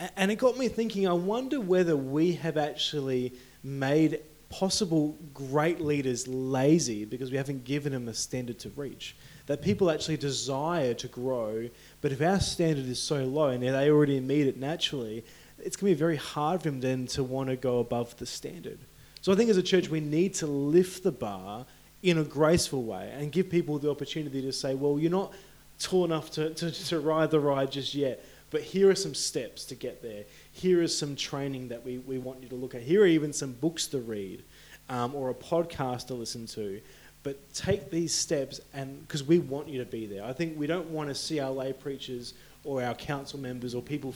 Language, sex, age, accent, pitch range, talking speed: English, male, 20-39, Australian, 125-155 Hz, 215 wpm